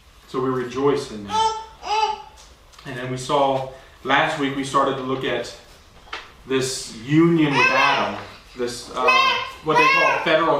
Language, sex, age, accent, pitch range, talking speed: English, male, 30-49, American, 135-210 Hz, 145 wpm